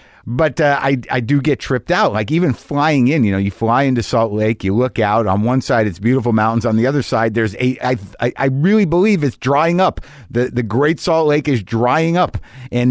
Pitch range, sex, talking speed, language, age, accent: 110-145 Hz, male, 230 wpm, English, 50-69, American